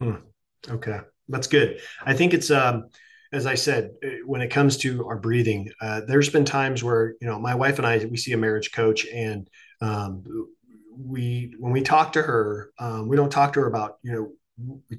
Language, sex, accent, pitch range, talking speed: English, male, American, 105-125 Hz, 205 wpm